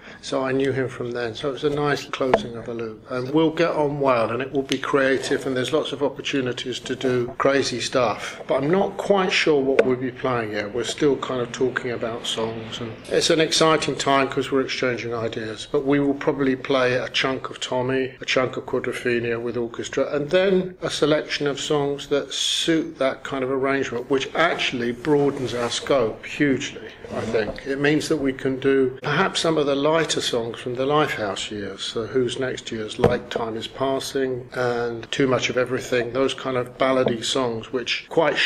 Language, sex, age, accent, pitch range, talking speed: English, male, 50-69, British, 120-140 Hz, 205 wpm